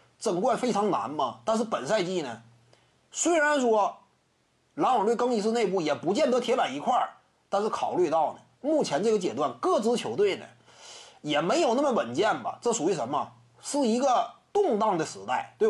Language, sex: Chinese, male